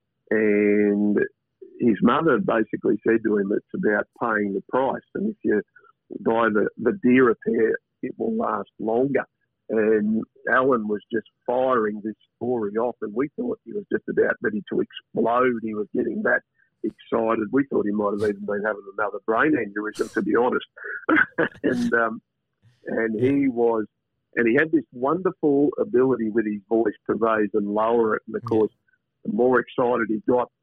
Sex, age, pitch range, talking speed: male, 50-69, 105-125 Hz, 170 wpm